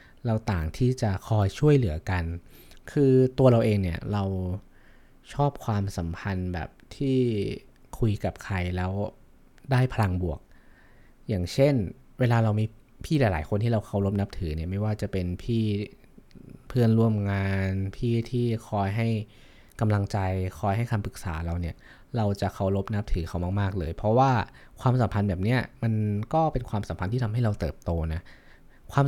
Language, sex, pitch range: Thai, male, 95-120 Hz